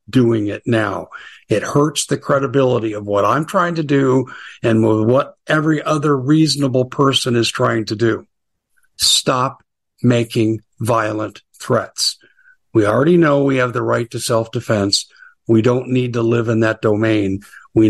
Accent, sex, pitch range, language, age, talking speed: American, male, 110-140 Hz, English, 50-69, 150 wpm